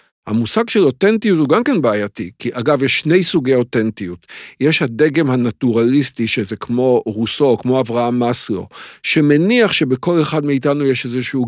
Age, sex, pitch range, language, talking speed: 50-69, male, 120-170 Hz, Hebrew, 145 wpm